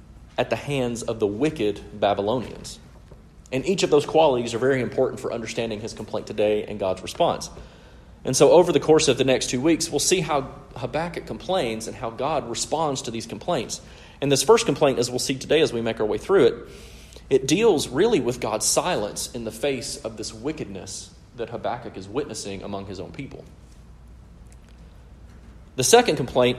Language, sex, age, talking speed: English, male, 40-59, 185 wpm